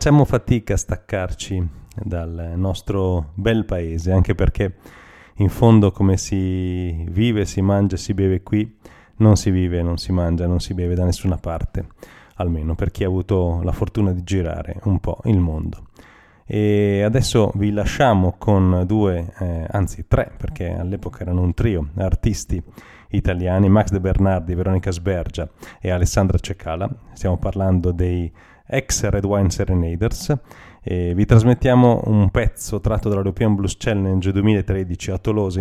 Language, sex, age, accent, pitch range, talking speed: Italian, male, 30-49, native, 90-105 Hz, 150 wpm